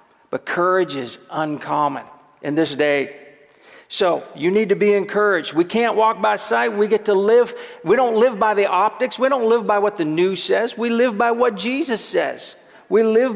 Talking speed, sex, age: 200 wpm, male, 40-59